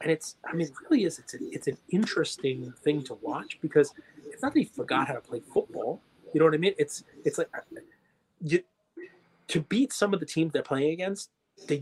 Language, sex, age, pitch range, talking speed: English, male, 30-49, 150-235 Hz, 225 wpm